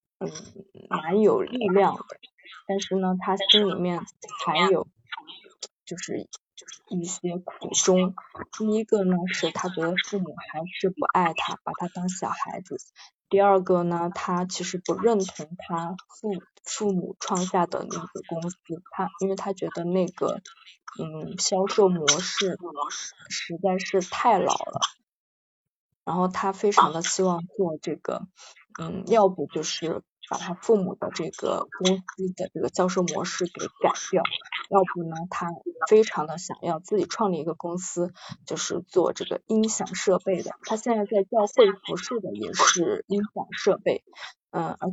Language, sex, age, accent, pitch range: Chinese, female, 20-39, native, 175-200 Hz